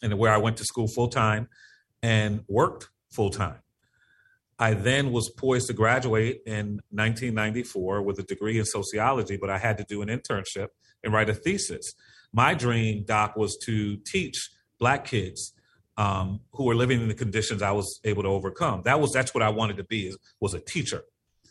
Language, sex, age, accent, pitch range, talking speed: English, male, 40-59, American, 105-125 Hz, 180 wpm